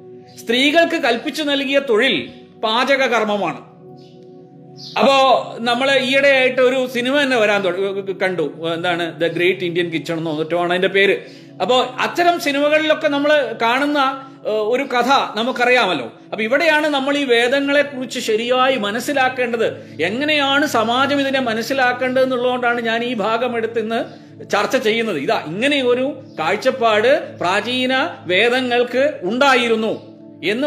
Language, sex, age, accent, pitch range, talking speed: Malayalam, male, 40-59, native, 230-270 Hz, 115 wpm